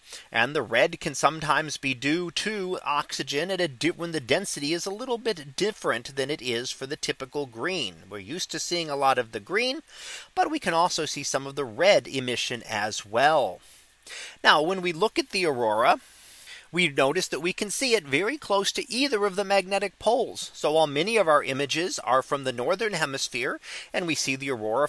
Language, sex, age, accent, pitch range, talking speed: English, male, 30-49, American, 145-205 Hz, 205 wpm